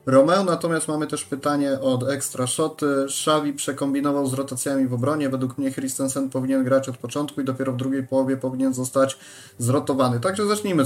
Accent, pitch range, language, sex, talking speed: native, 125-150 Hz, Polish, male, 170 wpm